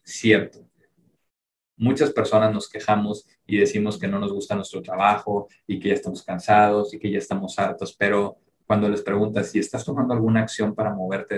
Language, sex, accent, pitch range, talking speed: Spanish, male, Mexican, 100-115 Hz, 180 wpm